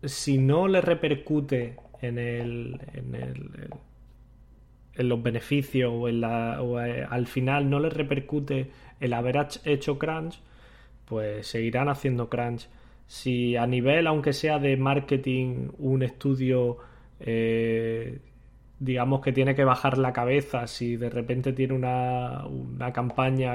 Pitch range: 120-140 Hz